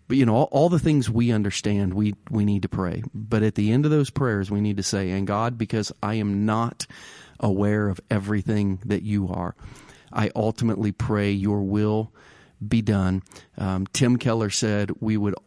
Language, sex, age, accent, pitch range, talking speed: English, male, 40-59, American, 100-125 Hz, 190 wpm